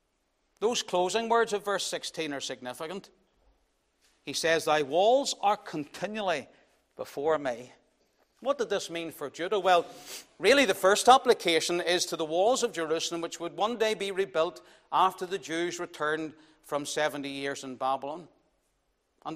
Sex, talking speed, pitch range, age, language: male, 150 wpm, 165-225 Hz, 60-79, English